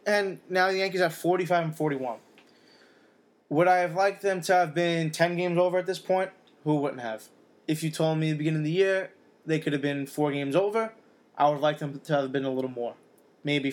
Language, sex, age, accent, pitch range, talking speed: English, male, 20-39, American, 145-175 Hz, 235 wpm